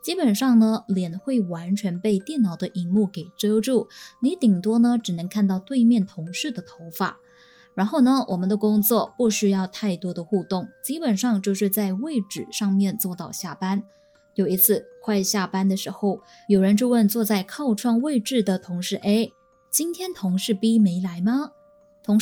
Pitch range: 195-245 Hz